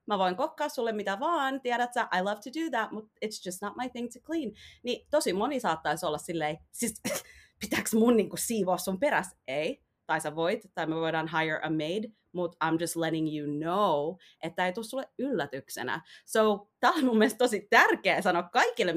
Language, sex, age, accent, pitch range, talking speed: Finnish, female, 30-49, native, 170-235 Hz, 195 wpm